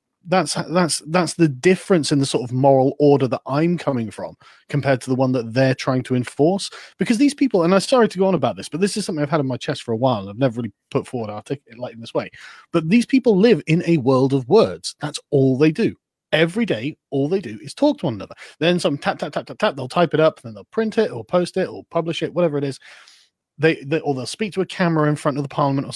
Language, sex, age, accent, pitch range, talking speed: English, male, 30-49, British, 140-195 Hz, 275 wpm